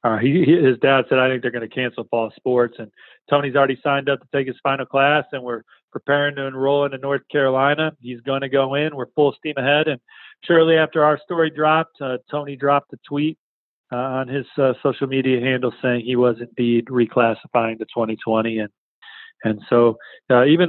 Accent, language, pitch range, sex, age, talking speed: American, English, 130-145 Hz, male, 40-59, 200 wpm